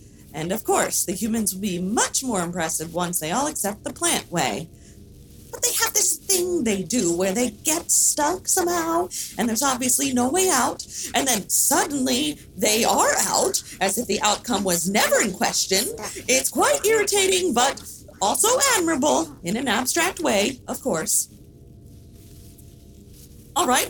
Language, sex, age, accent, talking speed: English, female, 40-59, American, 160 wpm